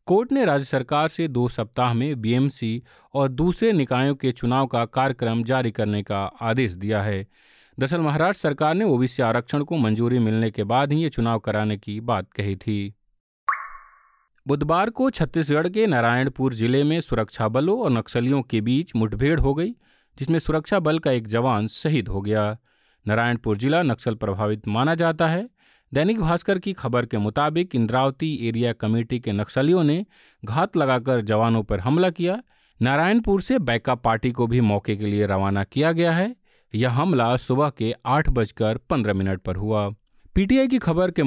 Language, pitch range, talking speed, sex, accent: Hindi, 115-155 Hz, 170 wpm, male, native